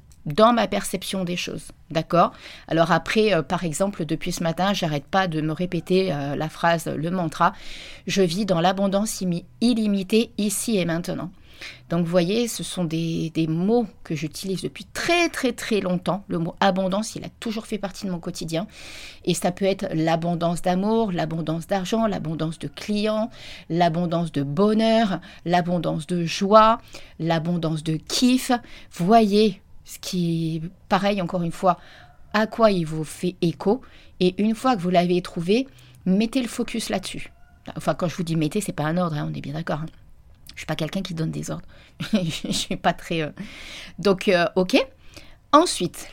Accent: French